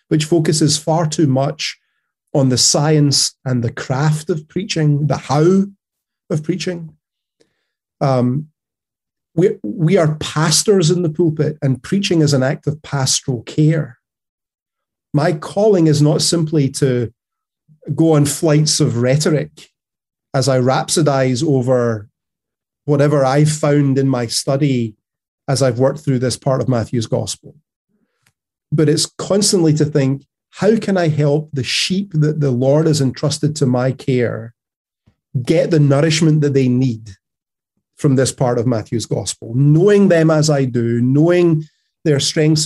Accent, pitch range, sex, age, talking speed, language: British, 130-155 Hz, male, 30-49, 145 wpm, English